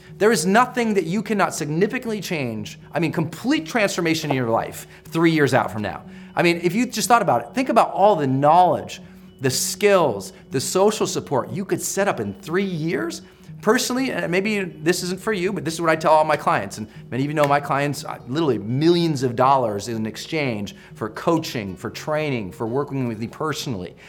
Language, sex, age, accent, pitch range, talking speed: English, male, 30-49, American, 150-200 Hz, 205 wpm